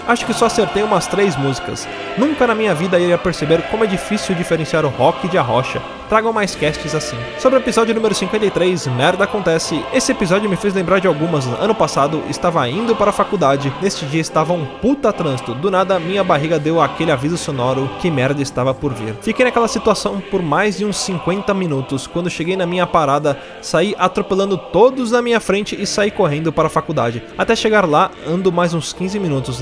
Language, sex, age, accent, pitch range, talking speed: Portuguese, male, 20-39, Brazilian, 150-205 Hz, 205 wpm